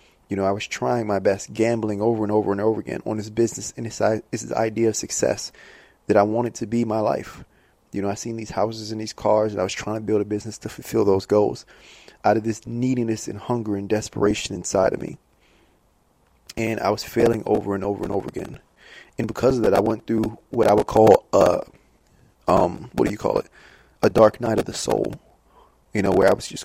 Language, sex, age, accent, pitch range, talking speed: English, male, 20-39, American, 95-115 Hz, 230 wpm